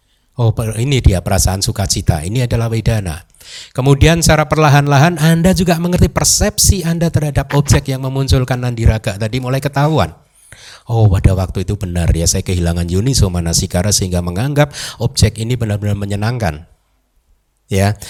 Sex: male